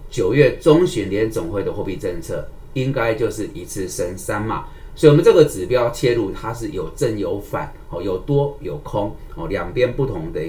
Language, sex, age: Chinese, male, 30-49